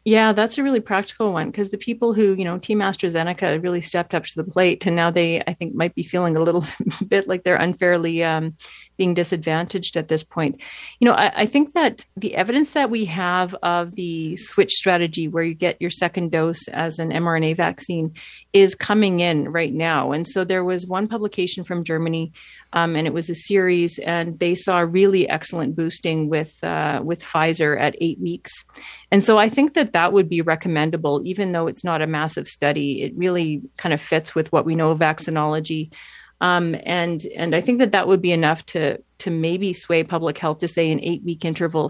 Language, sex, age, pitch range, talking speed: English, female, 40-59, 160-190 Hz, 210 wpm